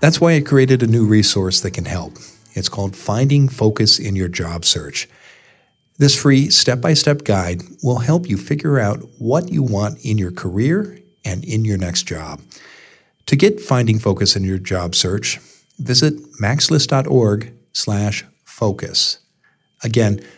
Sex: male